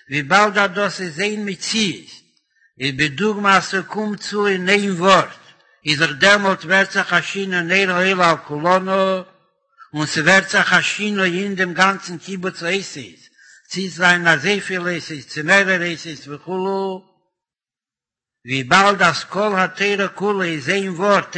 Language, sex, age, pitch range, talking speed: Hebrew, male, 60-79, 175-210 Hz, 105 wpm